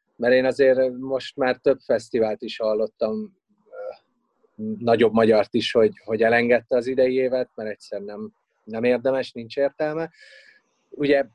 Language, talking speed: Hungarian, 135 wpm